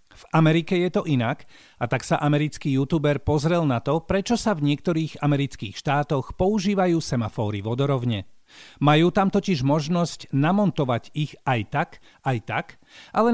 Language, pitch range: Slovak, 130-185 Hz